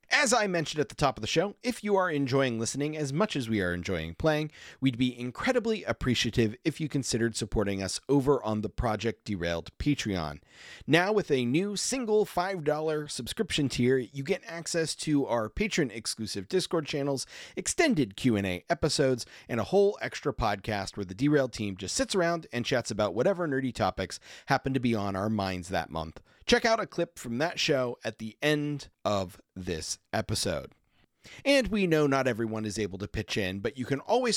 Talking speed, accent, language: 190 wpm, American, English